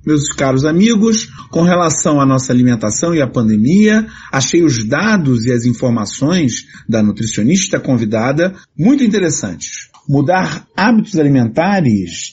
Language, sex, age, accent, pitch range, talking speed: Portuguese, male, 40-59, Brazilian, 130-180 Hz, 120 wpm